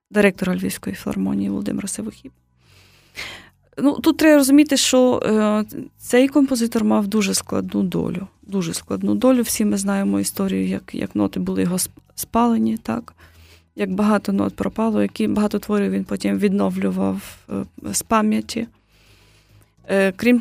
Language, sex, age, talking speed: Ukrainian, female, 20-39, 125 wpm